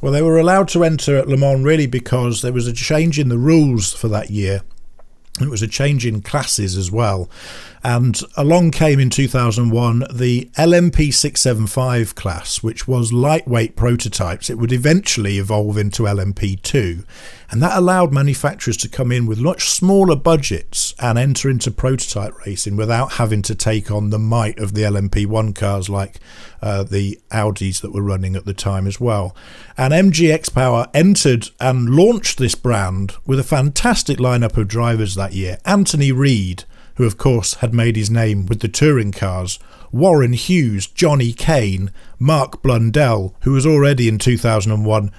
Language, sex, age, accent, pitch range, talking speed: English, male, 50-69, British, 105-135 Hz, 170 wpm